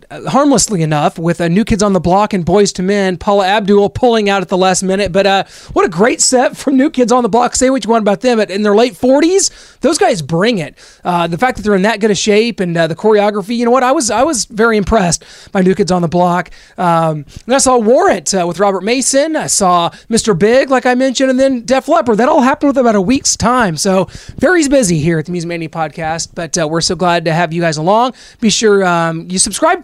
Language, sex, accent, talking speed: English, male, American, 260 wpm